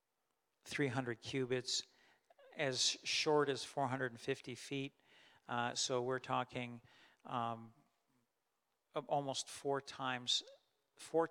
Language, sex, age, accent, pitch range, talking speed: English, male, 50-69, American, 120-135 Hz, 85 wpm